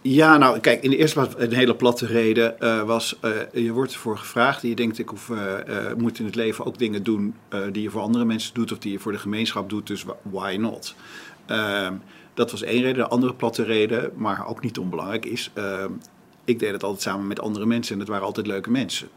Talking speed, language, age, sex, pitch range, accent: 240 wpm, Dutch, 50-69, male, 105-120 Hz, Dutch